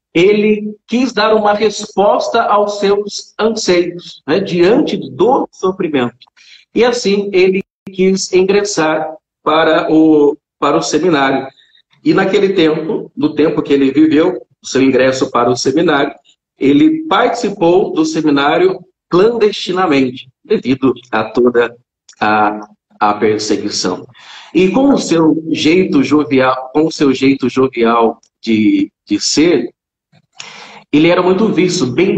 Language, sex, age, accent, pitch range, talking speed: Portuguese, male, 50-69, Brazilian, 135-200 Hz, 120 wpm